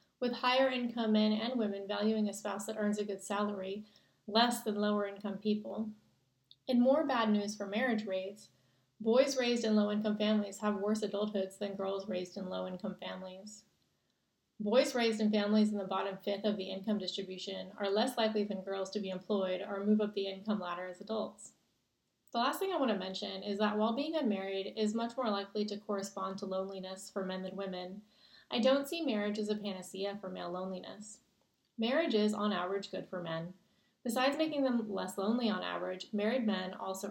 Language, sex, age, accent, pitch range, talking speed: English, female, 30-49, American, 190-220 Hz, 190 wpm